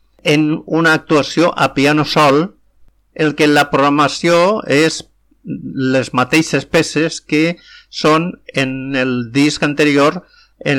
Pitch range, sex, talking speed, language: 125-155 Hz, male, 120 wpm, English